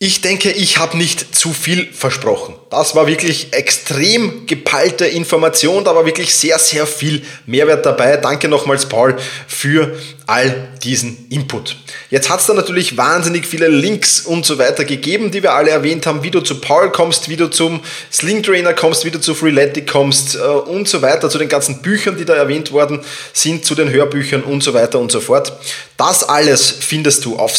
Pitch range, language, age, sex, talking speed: 135-170 Hz, German, 20-39, male, 195 wpm